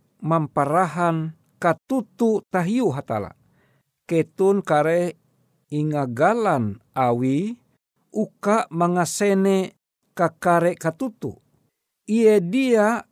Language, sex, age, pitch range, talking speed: Indonesian, male, 50-69, 135-180 Hz, 70 wpm